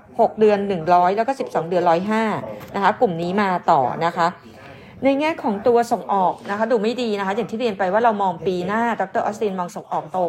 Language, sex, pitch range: Thai, female, 175-225 Hz